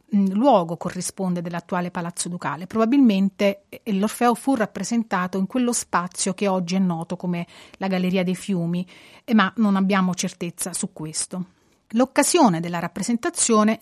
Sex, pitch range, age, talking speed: female, 175-220 Hz, 30-49, 130 wpm